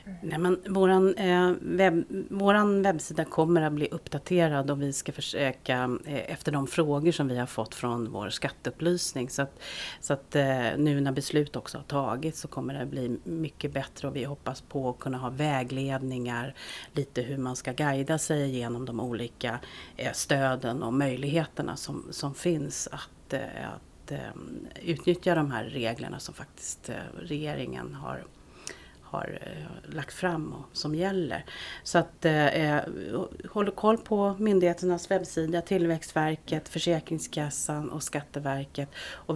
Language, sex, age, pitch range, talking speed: Swedish, female, 40-59, 135-175 Hz, 150 wpm